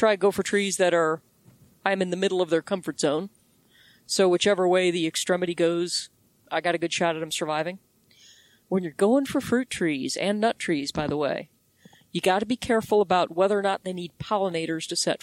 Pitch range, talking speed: 165-200 Hz, 215 wpm